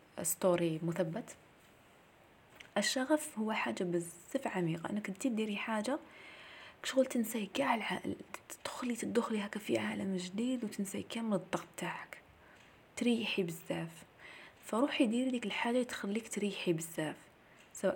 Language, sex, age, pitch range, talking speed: Arabic, female, 20-39, 180-230 Hz, 115 wpm